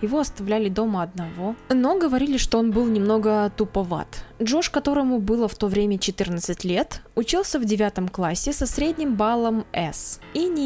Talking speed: 165 wpm